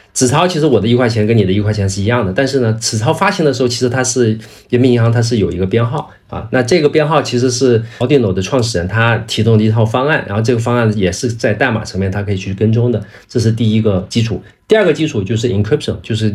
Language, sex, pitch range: Chinese, male, 105-135 Hz